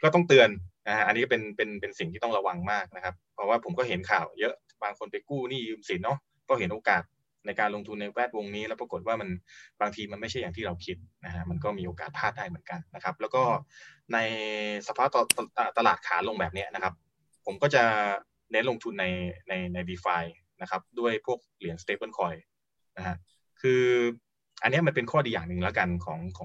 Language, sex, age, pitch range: Thai, male, 20-39, 90-120 Hz